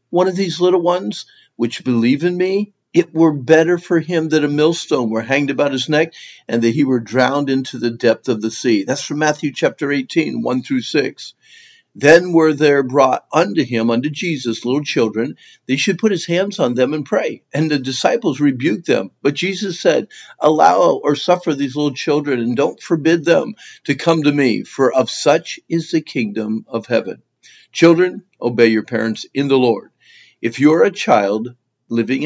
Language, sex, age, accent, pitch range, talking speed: English, male, 50-69, American, 125-170 Hz, 190 wpm